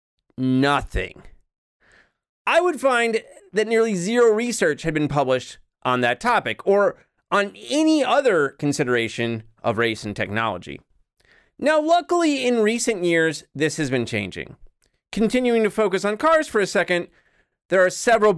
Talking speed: 140 wpm